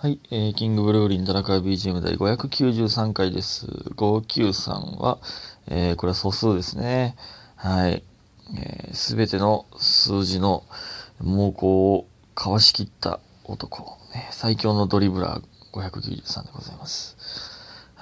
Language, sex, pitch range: Japanese, male, 95-120 Hz